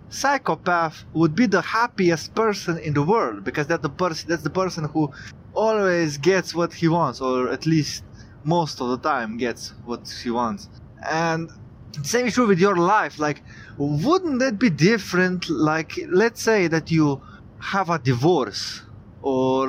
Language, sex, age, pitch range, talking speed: English, male, 20-39, 140-195 Hz, 165 wpm